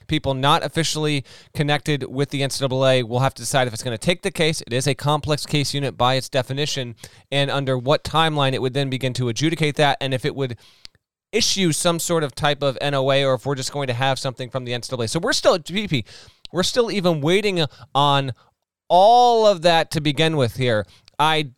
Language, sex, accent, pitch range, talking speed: English, male, American, 130-155 Hz, 215 wpm